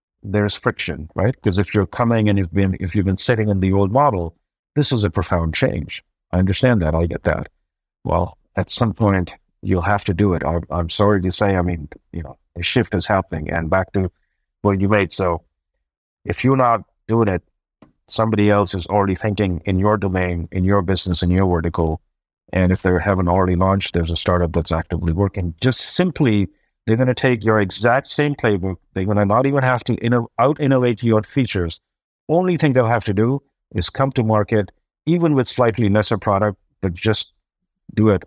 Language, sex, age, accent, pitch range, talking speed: English, male, 50-69, American, 90-120 Hz, 200 wpm